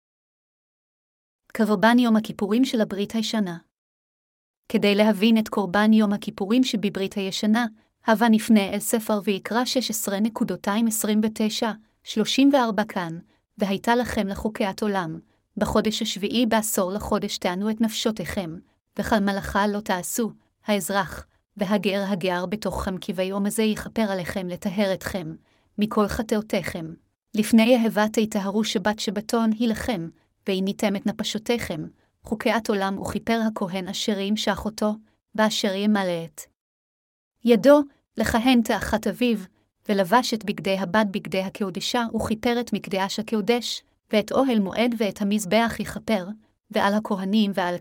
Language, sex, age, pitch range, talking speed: Hebrew, female, 30-49, 200-225 Hz, 120 wpm